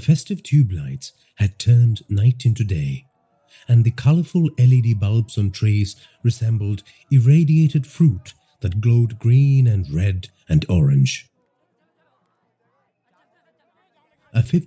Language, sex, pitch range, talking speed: English, male, 105-140 Hz, 110 wpm